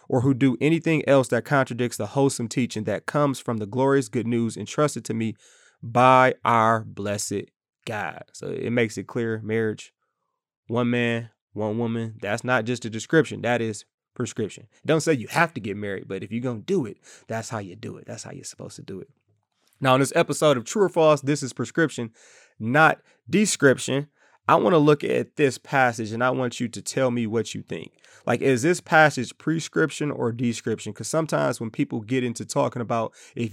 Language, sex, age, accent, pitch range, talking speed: English, male, 20-39, American, 115-140 Hz, 205 wpm